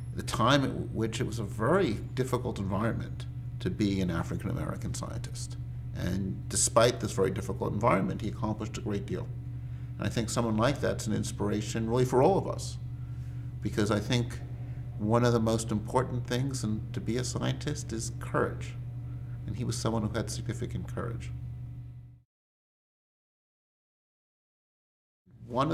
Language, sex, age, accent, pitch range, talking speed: English, male, 50-69, American, 105-120 Hz, 145 wpm